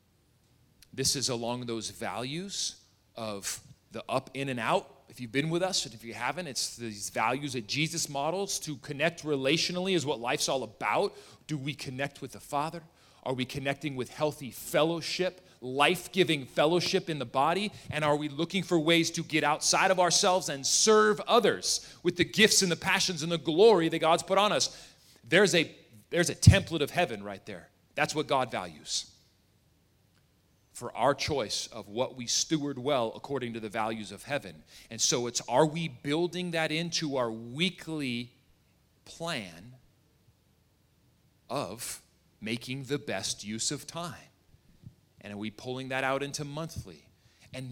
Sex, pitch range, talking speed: male, 120-170 Hz, 165 wpm